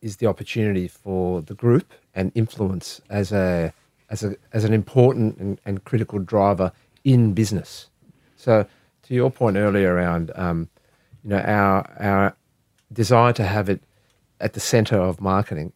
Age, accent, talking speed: 40-59, Australian, 155 wpm